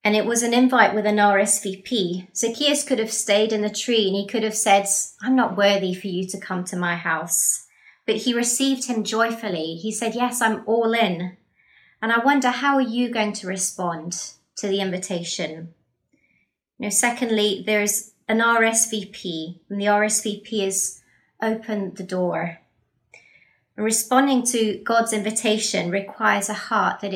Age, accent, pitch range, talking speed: 30-49, British, 190-230 Hz, 160 wpm